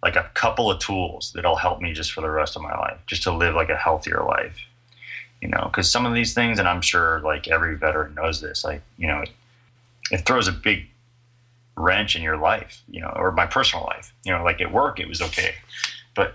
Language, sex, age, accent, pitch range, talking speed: English, male, 30-49, American, 80-110 Hz, 235 wpm